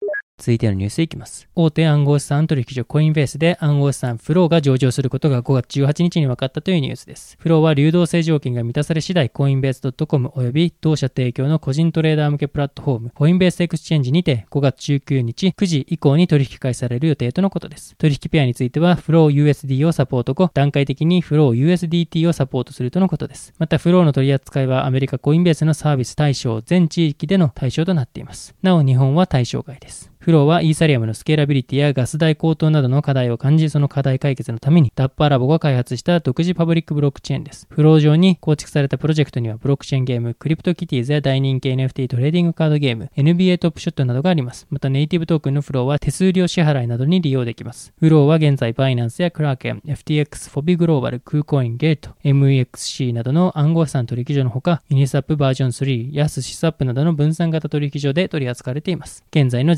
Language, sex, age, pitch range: Japanese, male, 20-39, 135-160 Hz